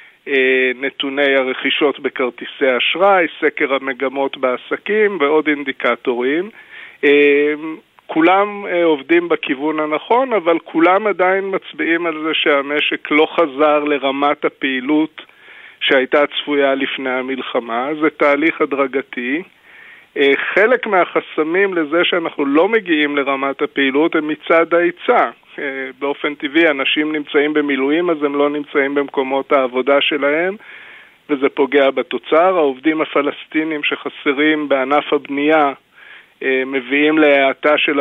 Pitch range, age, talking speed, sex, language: 135-160 Hz, 50-69, 105 wpm, male, Hebrew